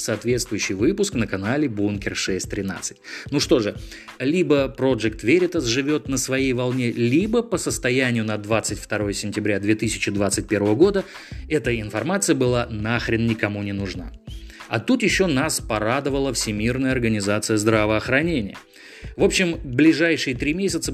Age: 20-39